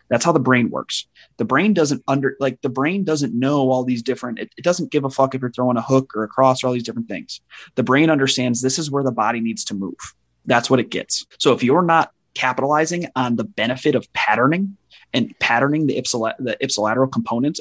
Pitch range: 115-135 Hz